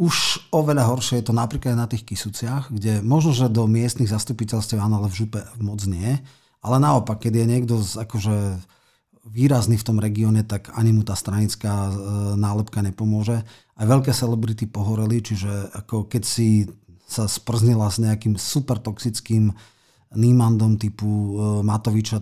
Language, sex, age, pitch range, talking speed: Slovak, male, 40-59, 100-115 Hz, 145 wpm